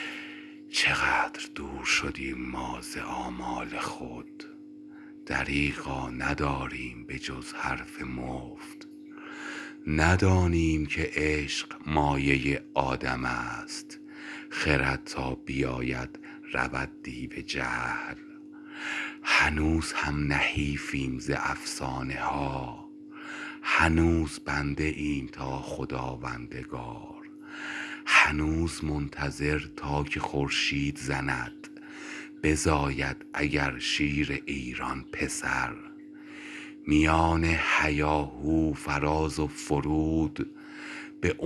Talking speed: 75 wpm